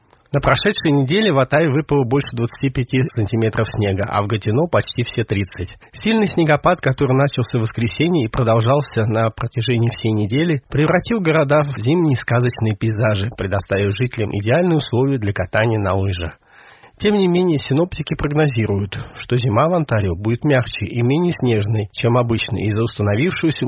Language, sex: Russian, male